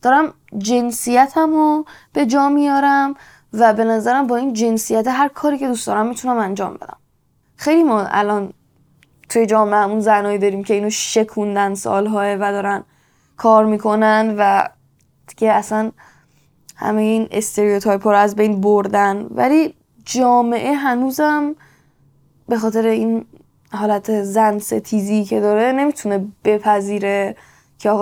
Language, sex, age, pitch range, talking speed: Persian, female, 10-29, 210-245 Hz, 125 wpm